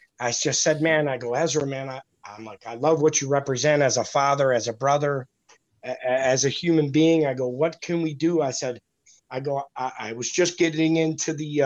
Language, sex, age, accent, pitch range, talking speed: English, male, 30-49, American, 135-165 Hz, 215 wpm